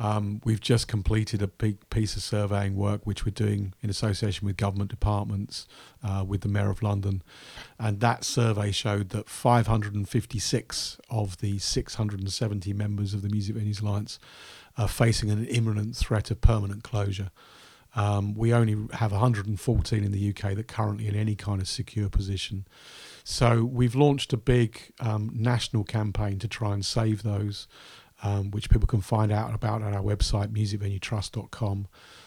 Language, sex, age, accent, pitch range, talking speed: English, male, 40-59, British, 100-115 Hz, 165 wpm